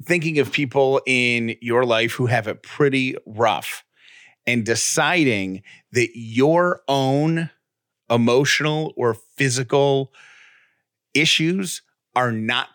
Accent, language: American, English